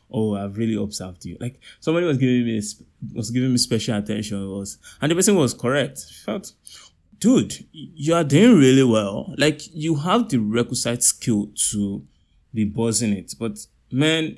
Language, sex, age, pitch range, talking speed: English, male, 20-39, 105-130 Hz, 175 wpm